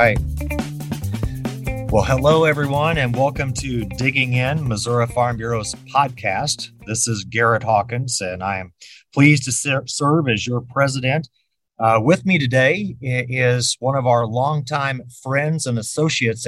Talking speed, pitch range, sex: 140 wpm, 110-130 Hz, male